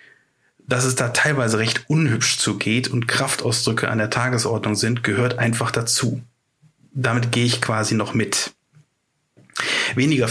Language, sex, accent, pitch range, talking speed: German, male, German, 110-130 Hz, 135 wpm